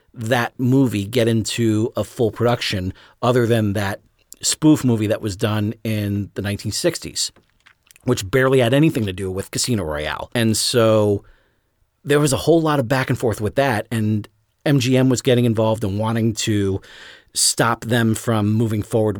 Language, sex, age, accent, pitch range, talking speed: English, male, 40-59, American, 105-130 Hz, 170 wpm